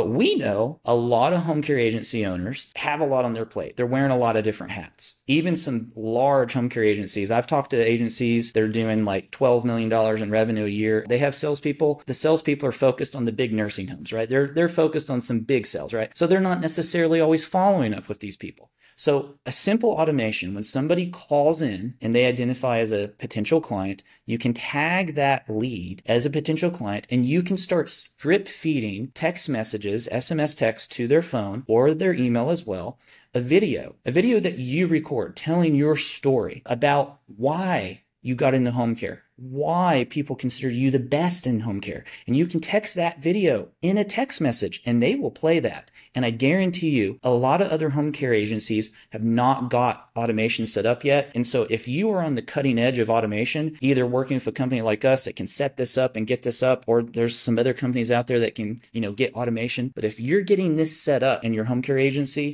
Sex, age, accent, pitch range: male, 30-49, American, 115-150 Hz